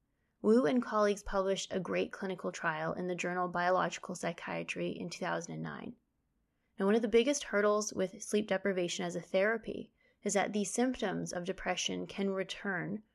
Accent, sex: American, female